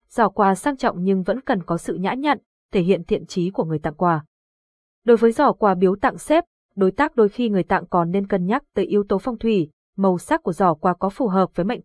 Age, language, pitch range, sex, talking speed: 20-39, Vietnamese, 180-235 Hz, female, 260 wpm